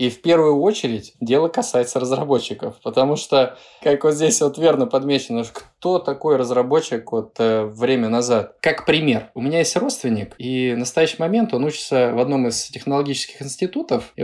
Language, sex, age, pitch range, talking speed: Russian, male, 20-39, 120-160 Hz, 170 wpm